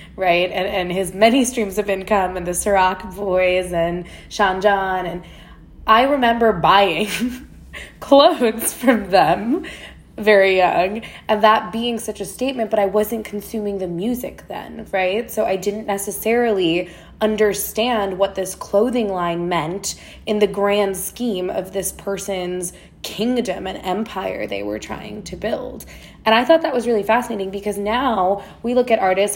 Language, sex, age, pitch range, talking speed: English, female, 20-39, 195-245 Hz, 155 wpm